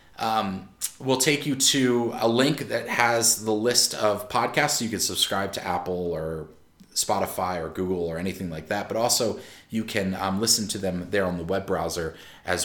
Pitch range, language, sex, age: 100-145 Hz, English, male, 30-49